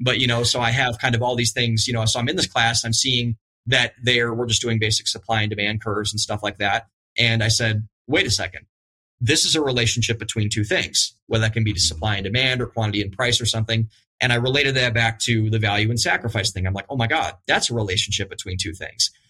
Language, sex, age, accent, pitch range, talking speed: English, male, 30-49, American, 110-120 Hz, 260 wpm